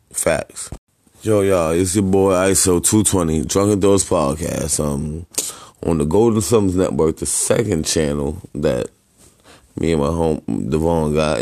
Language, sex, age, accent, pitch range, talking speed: English, male, 20-39, American, 80-95 Hz, 140 wpm